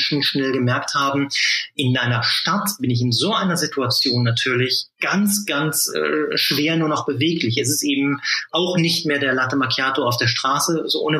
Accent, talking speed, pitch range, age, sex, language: German, 180 wpm, 130-155 Hz, 30-49, male, German